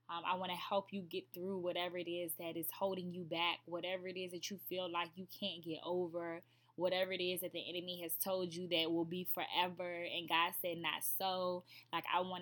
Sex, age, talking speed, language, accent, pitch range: female, 10-29, 230 wpm, English, American, 165-190 Hz